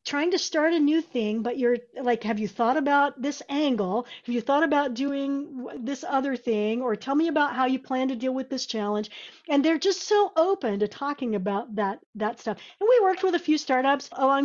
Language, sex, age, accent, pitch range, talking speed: English, female, 40-59, American, 230-295 Hz, 225 wpm